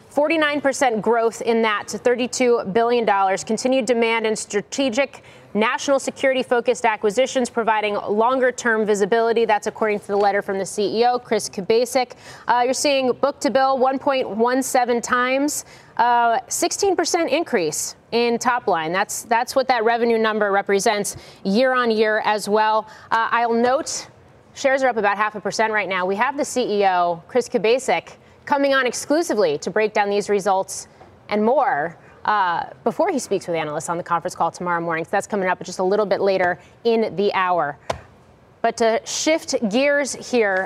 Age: 30-49